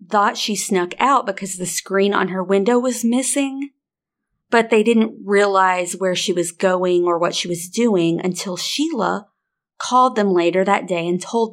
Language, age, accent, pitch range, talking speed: English, 30-49, American, 180-210 Hz, 175 wpm